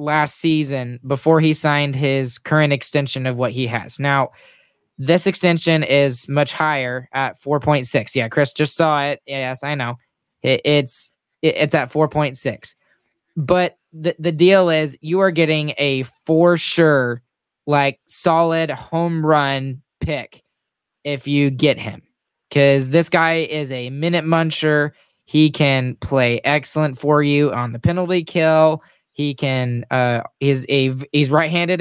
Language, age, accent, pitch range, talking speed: English, 10-29, American, 130-160 Hz, 145 wpm